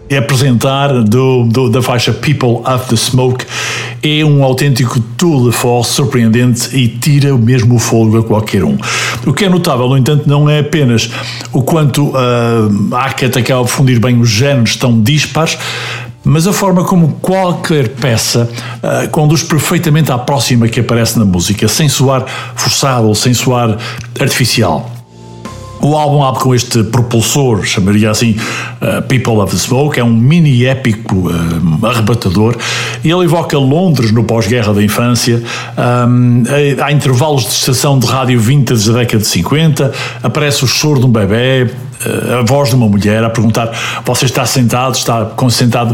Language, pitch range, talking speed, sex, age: Portuguese, 115-140 Hz, 170 wpm, male, 60-79